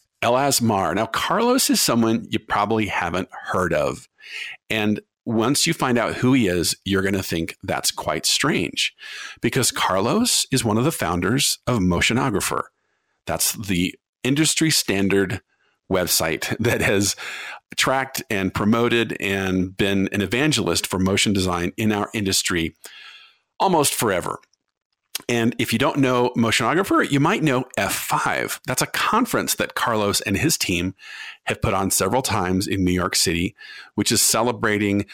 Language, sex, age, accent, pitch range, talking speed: English, male, 50-69, American, 95-130 Hz, 150 wpm